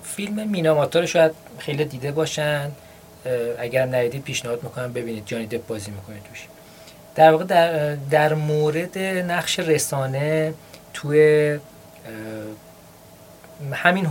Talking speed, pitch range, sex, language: 100 wpm, 130-160 Hz, male, Persian